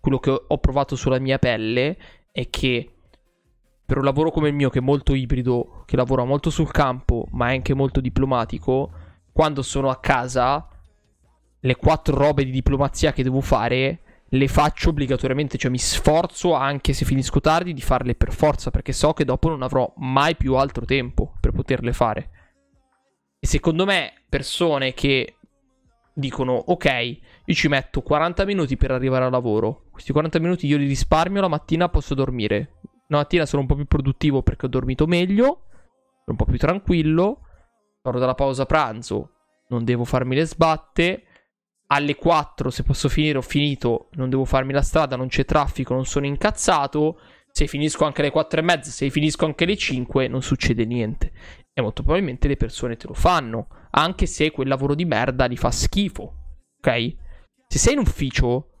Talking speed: 175 wpm